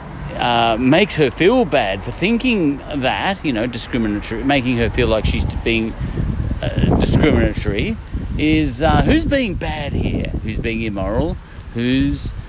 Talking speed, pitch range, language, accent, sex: 140 wpm, 95-125 Hz, English, Australian, male